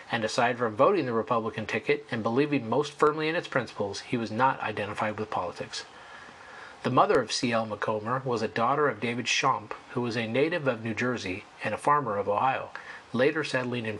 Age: 40-59